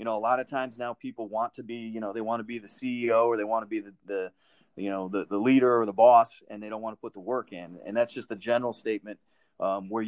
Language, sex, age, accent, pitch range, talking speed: English, male, 30-49, American, 110-130 Hz, 305 wpm